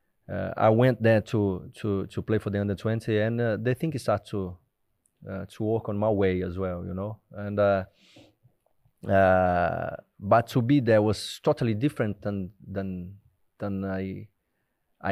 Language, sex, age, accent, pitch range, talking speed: English, male, 30-49, Brazilian, 95-115 Hz, 170 wpm